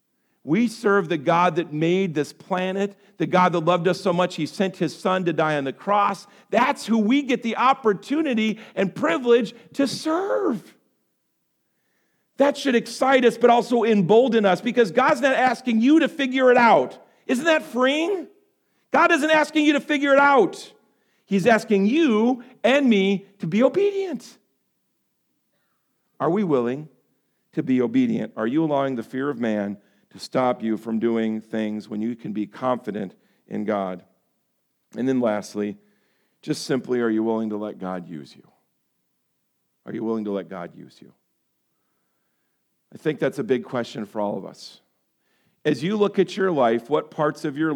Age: 50-69